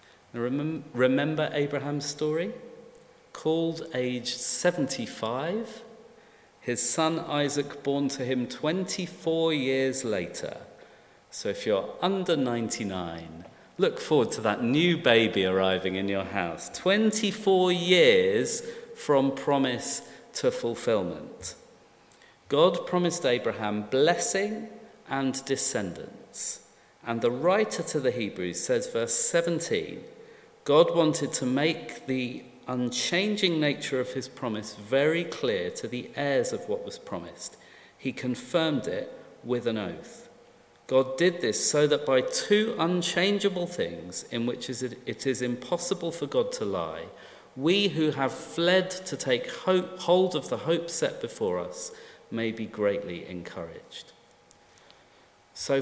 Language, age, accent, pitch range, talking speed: English, 40-59, British, 130-200 Hz, 120 wpm